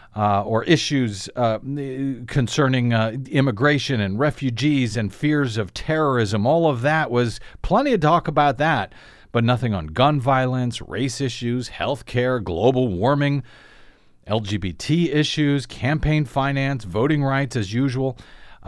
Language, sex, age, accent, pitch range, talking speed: English, male, 40-59, American, 110-145 Hz, 130 wpm